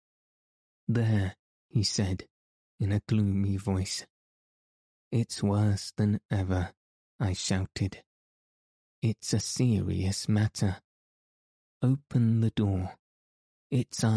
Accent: British